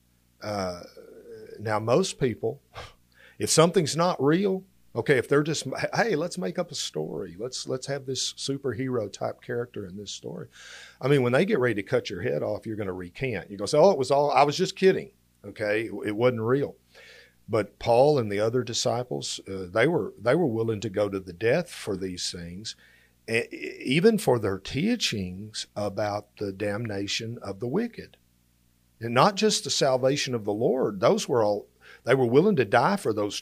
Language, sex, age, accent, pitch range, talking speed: English, male, 50-69, American, 95-130 Hz, 195 wpm